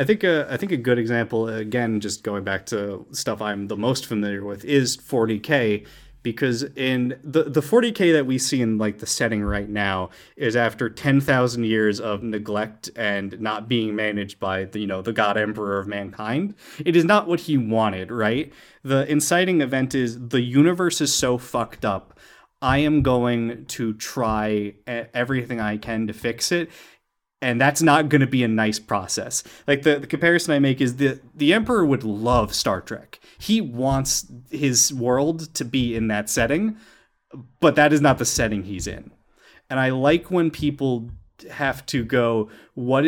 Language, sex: English, male